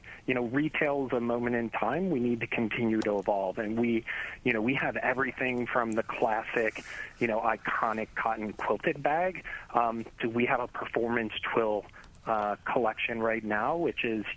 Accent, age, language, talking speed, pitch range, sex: American, 30-49, English, 180 wpm, 105-120 Hz, male